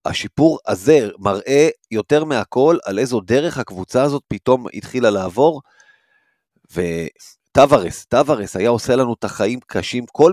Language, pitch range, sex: Hebrew, 115-150 Hz, male